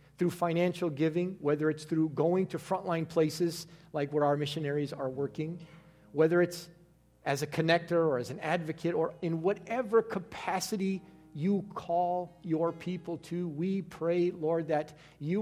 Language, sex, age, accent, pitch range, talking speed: English, male, 50-69, American, 130-165 Hz, 150 wpm